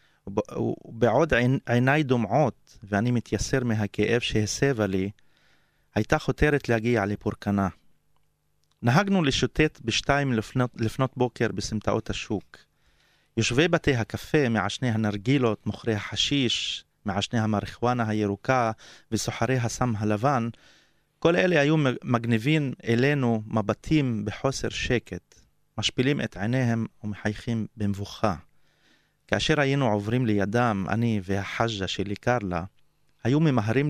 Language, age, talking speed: Hebrew, 30-49, 100 wpm